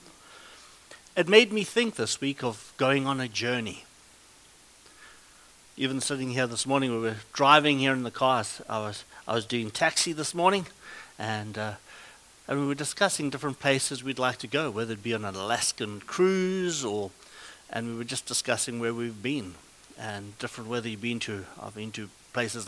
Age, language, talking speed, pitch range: 60-79, English, 185 wpm, 120-150 Hz